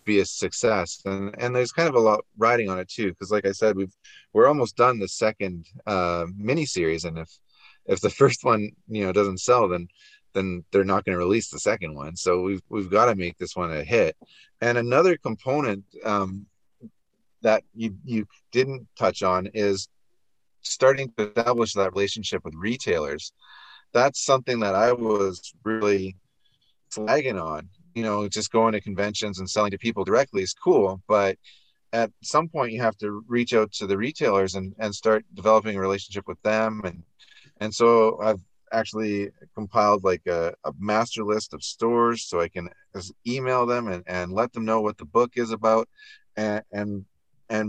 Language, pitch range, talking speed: English, 95-115 Hz, 180 wpm